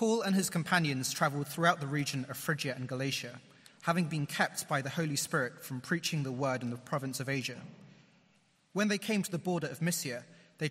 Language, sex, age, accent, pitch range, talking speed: English, male, 30-49, British, 135-175 Hz, 205 wpm